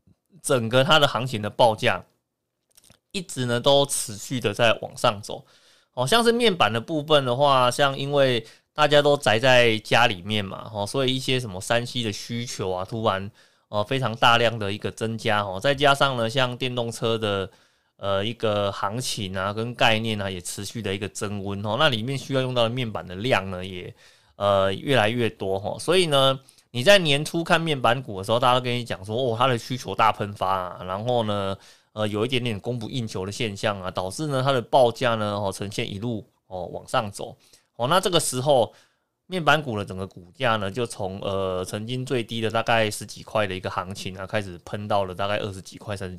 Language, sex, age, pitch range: Chinese, male, 20-39, 100-130 Hz